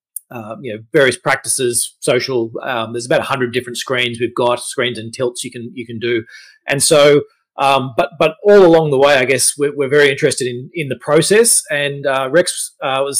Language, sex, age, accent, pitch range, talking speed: English, male, 30-49, Australian, 130-165 Hz, 215 wpm